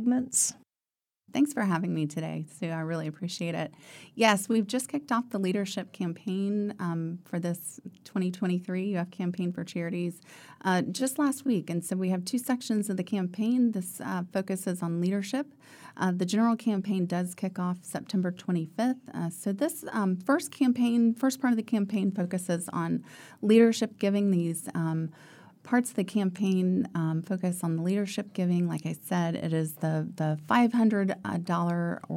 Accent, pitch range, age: American, 170-220 Hz, 30-49